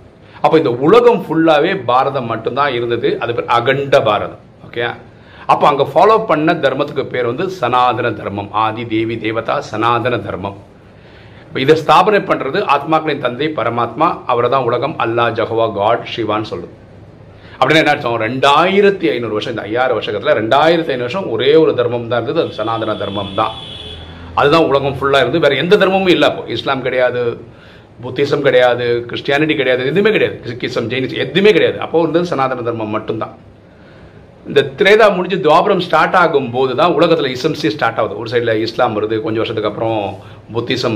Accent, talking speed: native, 150 wpm